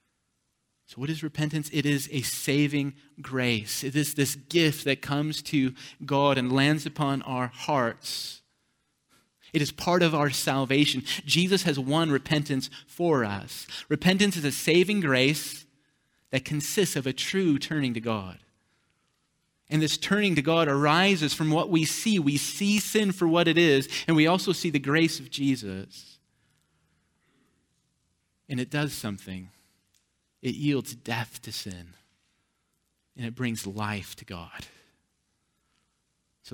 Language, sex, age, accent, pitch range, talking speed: English, male, 30-49, American, 120-155 Hz, 145 wpm